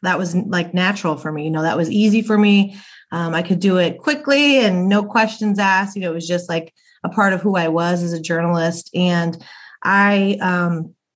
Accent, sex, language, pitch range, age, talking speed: American, female, English, 180-215 Hz, 30-49, 220 wpm